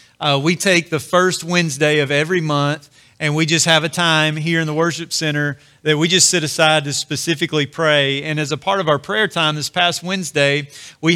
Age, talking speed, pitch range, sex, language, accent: 40-59, 215 wpm, 155-180 Hz, male, English, American